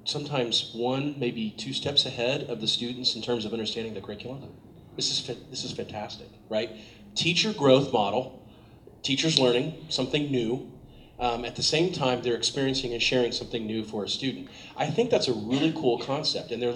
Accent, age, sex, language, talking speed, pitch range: American, 40-59, male, English, 185 wpm, 120-145 Hz